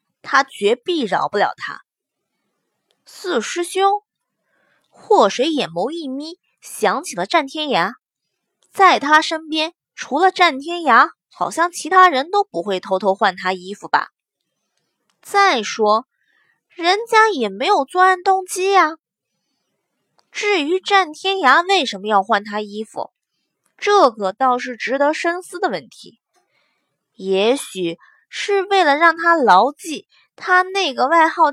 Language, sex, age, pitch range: Chinese, female, 20-39, 255-365 Hz